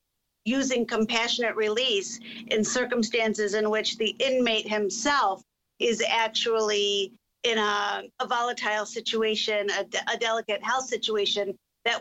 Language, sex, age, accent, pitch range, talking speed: English, female, 50-69, American, 220-255 Hz, 115 wpm